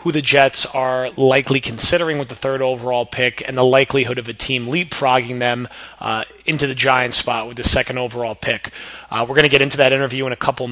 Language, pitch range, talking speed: English, 120-135 Hz, 225 wpm